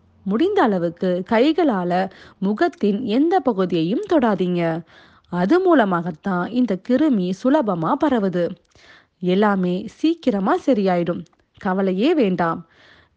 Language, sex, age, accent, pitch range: Tamil, female, 30-49, native, 190-305 Hz